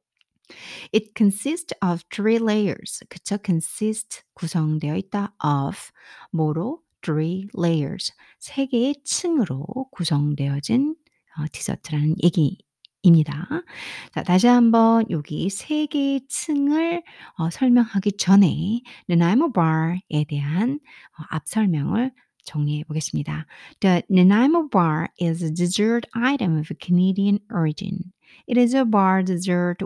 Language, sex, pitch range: Korean, female, 160-235 Hz